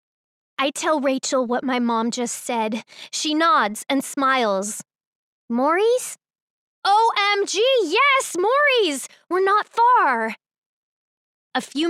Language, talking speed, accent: English, 105 wpm, American